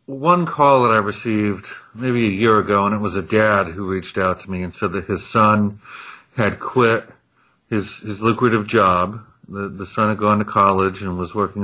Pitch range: 95-115 Hz